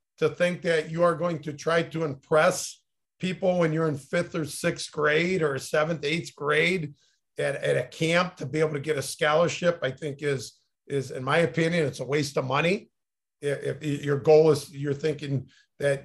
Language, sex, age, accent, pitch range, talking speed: English, male, 50-69, American, 140-160 Hz, 195 wpm